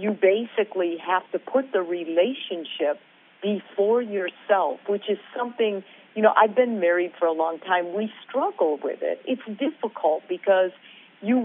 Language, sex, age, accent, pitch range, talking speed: English, female, 50-69, American, 180-225 Hz, 150 wpm